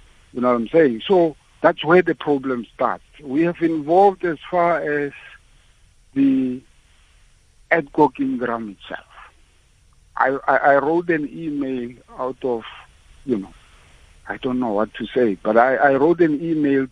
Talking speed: 155 wpm